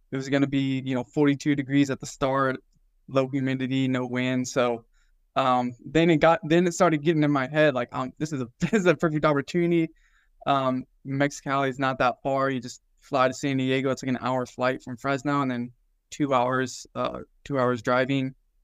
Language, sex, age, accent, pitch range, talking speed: English, male, 20-39, American, 125-145 Hz, 210 wpm